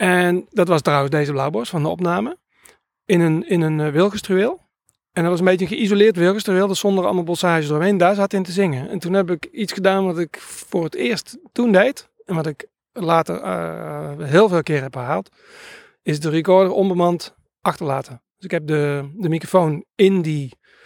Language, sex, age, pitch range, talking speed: Dutch, male, 40-59, 145-190 Hz, 200 wpm